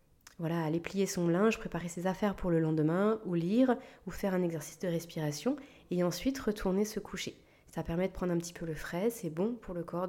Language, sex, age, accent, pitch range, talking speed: French, female, 30-49, French, 170-220 Hz, 225 wpm